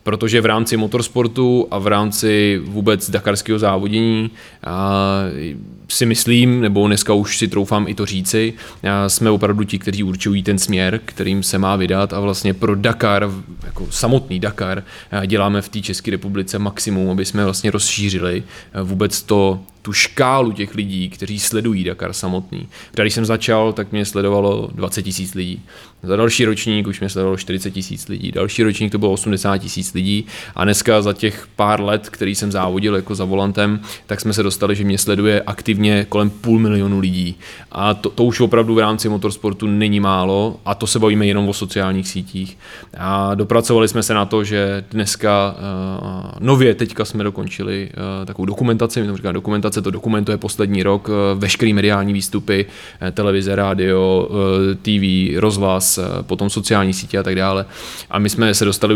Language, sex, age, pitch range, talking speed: Czech, male, 20-39, 95-105 Hz, 170 wpm